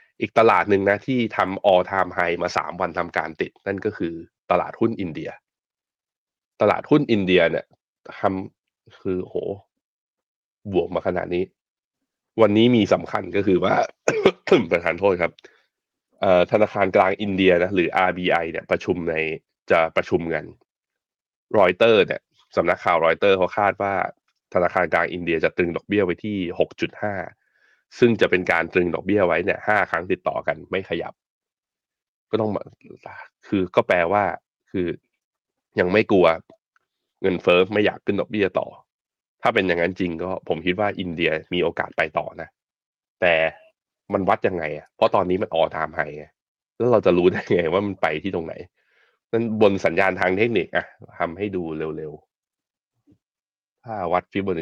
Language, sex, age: Thai, male, 20-39